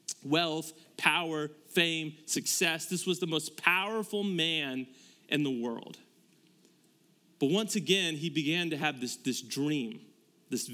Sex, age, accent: male, 30-49, American